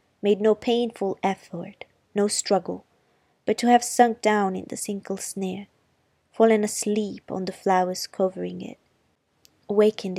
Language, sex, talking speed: Italian, female, 135 wpm